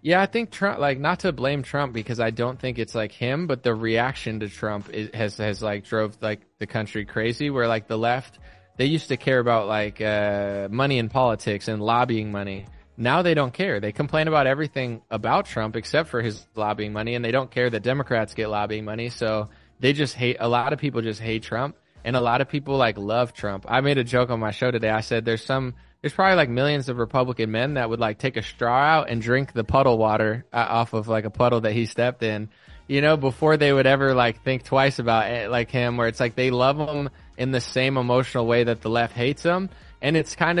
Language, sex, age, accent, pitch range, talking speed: English, male, 20-39, American, 110-135 Hz, 240 wpm